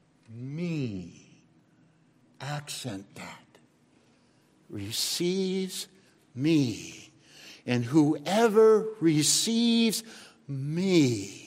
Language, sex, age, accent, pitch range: English, male, 60-79, American, 135-190 Hz